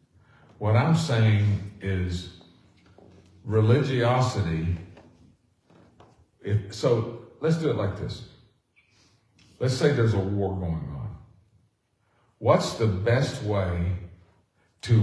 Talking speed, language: 90 wpm, English